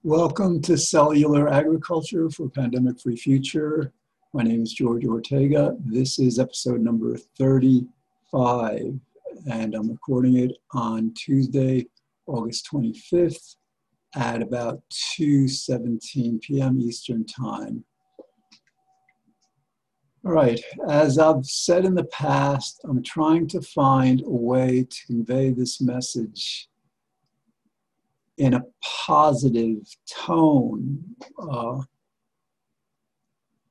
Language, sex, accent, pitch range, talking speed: English, male, American, 125-165 Hz, 100 wpm